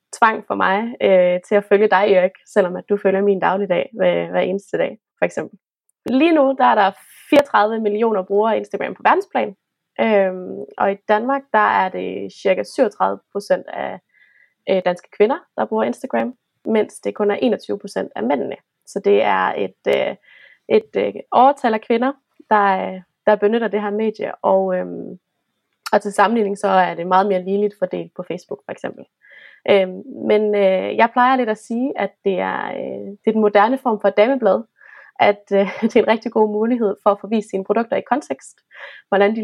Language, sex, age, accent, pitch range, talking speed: Danish, female, 20-39, native, 190-225 Hz, 190 wpm